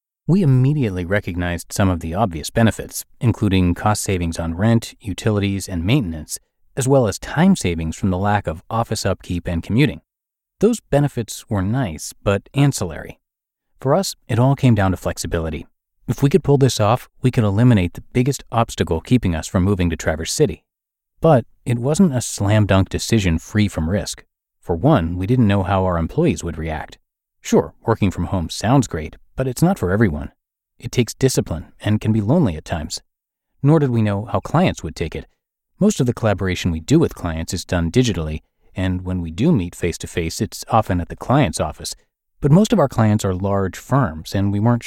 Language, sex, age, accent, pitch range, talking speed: English, male, 30-49, American, 90-125 Hz, 195 wpm